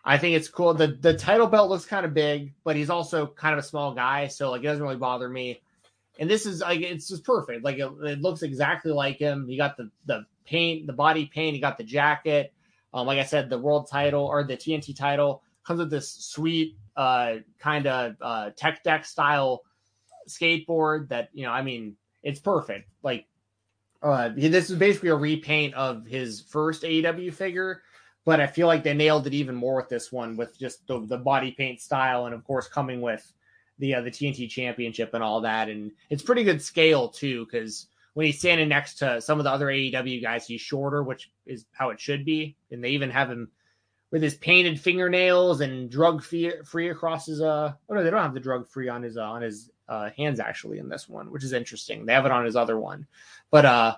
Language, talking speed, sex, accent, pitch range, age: English, 220 wpm, male, American, 125-160 Hz, 20-39